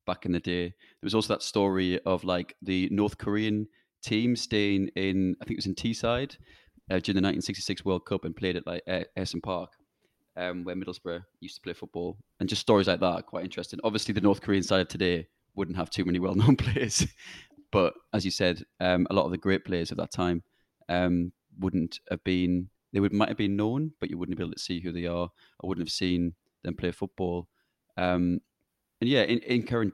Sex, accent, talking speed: male, British, 225 wpm